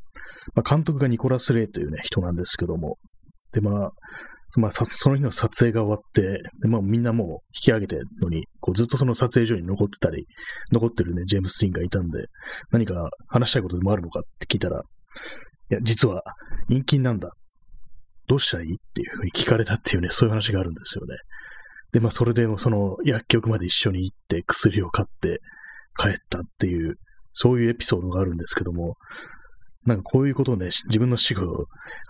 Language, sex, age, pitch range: Japanese, male, 30-49, 95-120 Hz